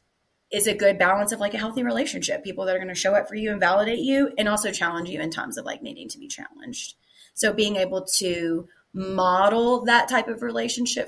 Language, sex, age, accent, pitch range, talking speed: English, female, 30-49, American, 185-245 Hz, 225 wpm